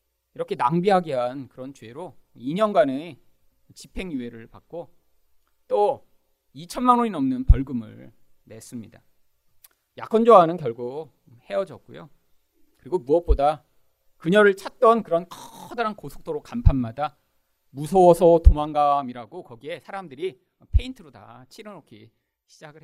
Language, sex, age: Korean, male, 40-59